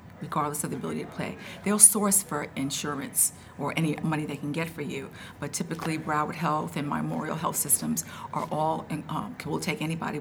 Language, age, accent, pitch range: English, 50-69, American, 160-215 Hz